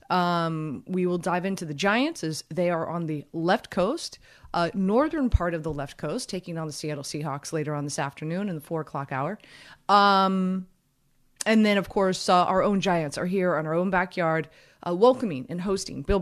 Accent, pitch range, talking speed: American, 155-185 Hz, 205 wpm